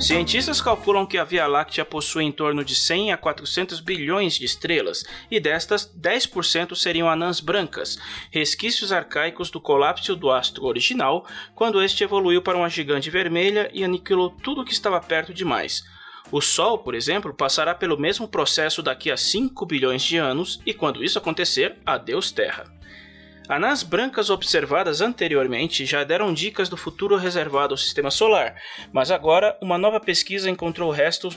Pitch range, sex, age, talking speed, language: 145-190 Hz, male, 20-39, 160 wpm, Portuguese